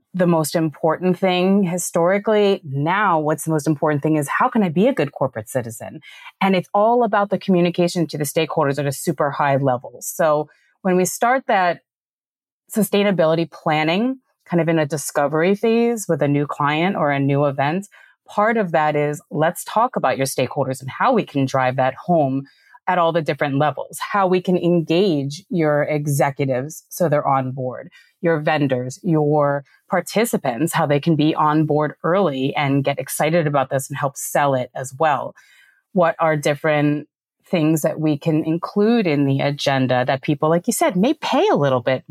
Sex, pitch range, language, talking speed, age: female, 140-175 Hz, English, 185 wpm, 30-49